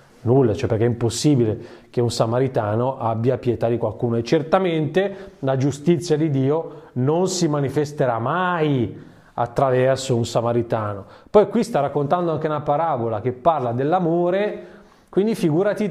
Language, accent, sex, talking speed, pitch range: Italian, native, male, 140 wpm, 125-175 Hz